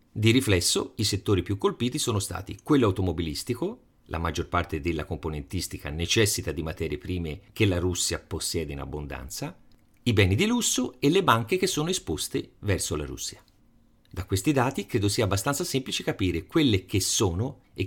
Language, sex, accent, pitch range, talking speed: Italian, male, native, 90-120 Hz, 170 wpm